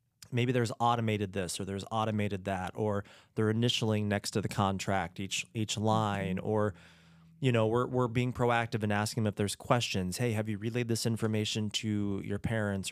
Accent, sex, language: American, male, English